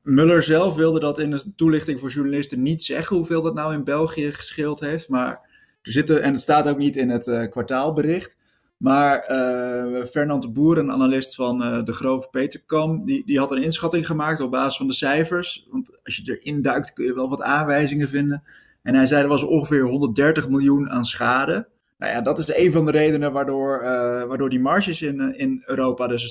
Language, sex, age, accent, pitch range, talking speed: Dutch, male, 20-39, Dutch, 120-150 Hz, 210 wpm